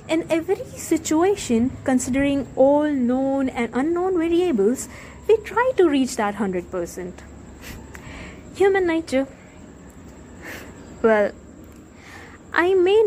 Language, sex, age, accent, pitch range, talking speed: English, female, 20-39, Indian, 205-315 Hz, 95 wpm